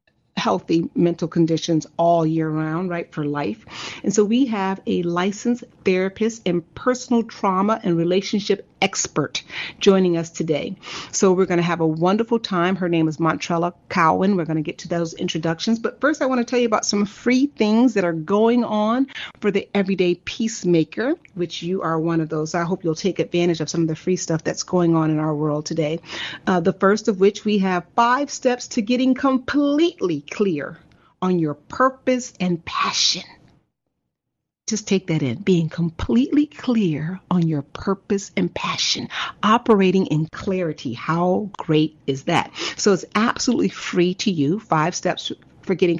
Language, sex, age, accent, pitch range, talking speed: English, female, 40-59, American, 165-215 Hz, 175 wpm